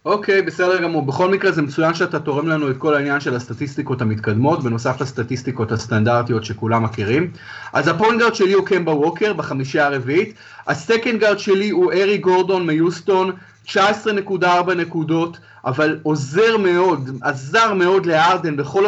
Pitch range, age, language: 150-195 Hz, 30-49, Hebrew